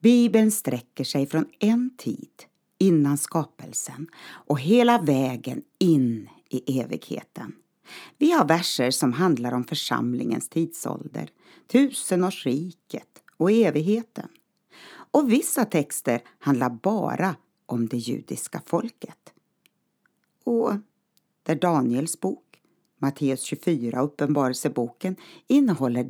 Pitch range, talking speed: 135-215 Hz, 95 wpm